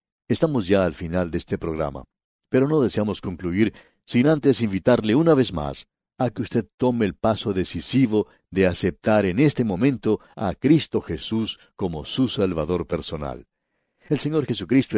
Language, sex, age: English, male, 60-79